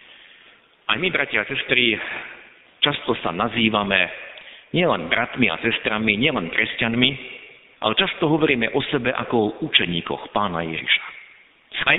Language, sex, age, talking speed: Slovak, male, 50-69, 125 wpm